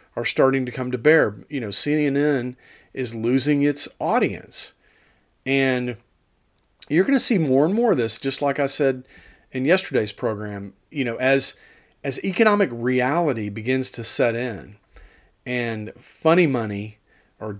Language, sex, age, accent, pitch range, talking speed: English, male, 40-59, American, 115-140 Hz, 150 wpm